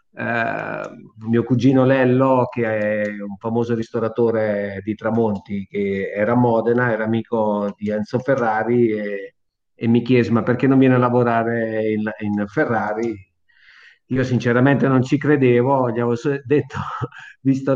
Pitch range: 110-125 Hz